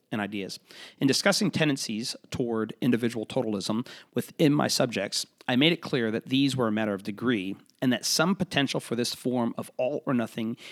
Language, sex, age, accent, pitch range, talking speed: English, male, 40-59, American, 110-135 Hz, 175 wpm